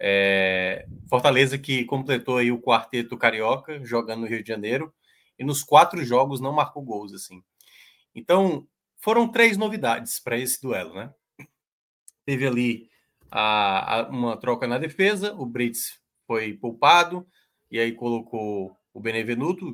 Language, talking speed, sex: Portuguese, 140 wpm, male